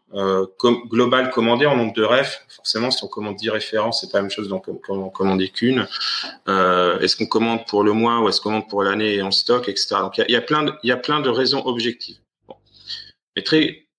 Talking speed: 225 wpm